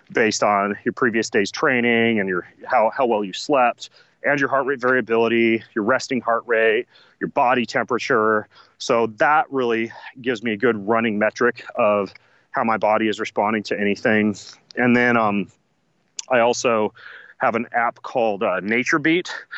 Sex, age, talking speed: male, 30-49, 160 wpm